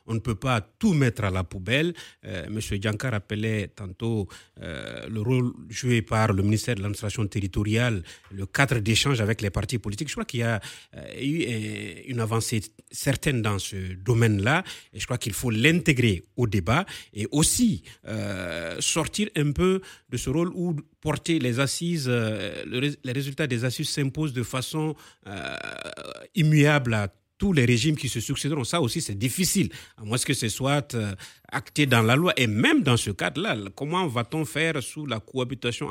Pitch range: 110-150 Hz